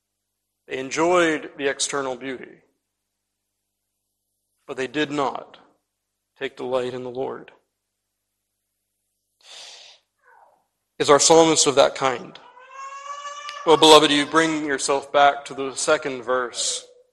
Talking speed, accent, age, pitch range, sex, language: 105 wpm, American, 40-59, 100-155 Hz, male, English